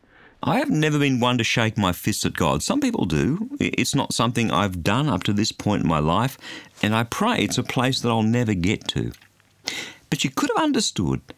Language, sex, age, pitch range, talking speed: English, male, 50-69, 95-130 Hz, 220 wpm